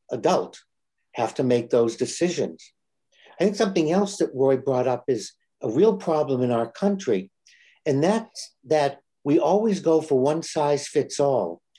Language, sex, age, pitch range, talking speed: English, male, 60-79, 135-175 Hz, 165 wpm